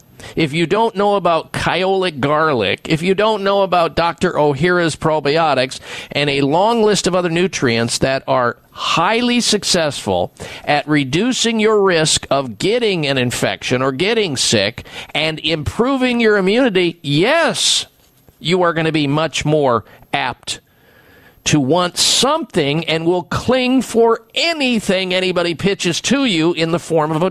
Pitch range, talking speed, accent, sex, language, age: 145-210 Hz, 145 wpm, American, male, English, 50-69